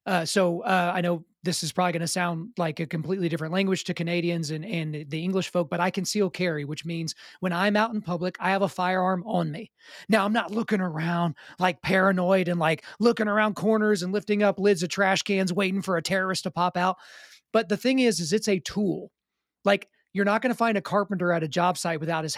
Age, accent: 30-49, American